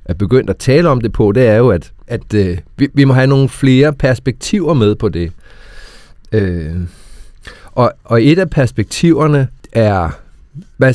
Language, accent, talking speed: Danish, native, 155 wpm